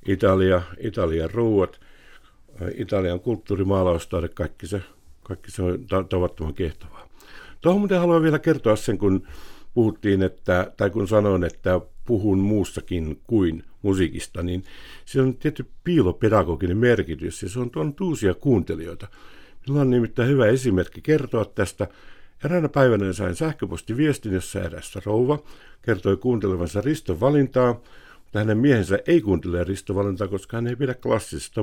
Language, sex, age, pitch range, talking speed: Finnish, male, 60-79, 95-125 Hz, 135 wpm